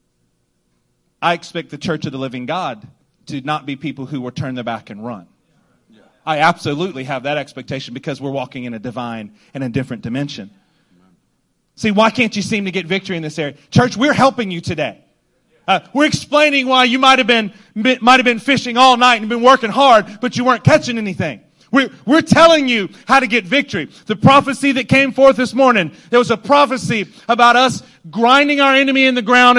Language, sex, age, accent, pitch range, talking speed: English, male, 30-49, American, 175-255 Hz, 200 wpm